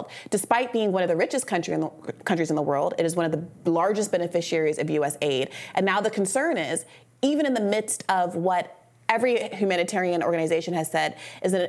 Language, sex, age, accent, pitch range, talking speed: English, female, 30-49, American, 170-210 Hz, 190 wpm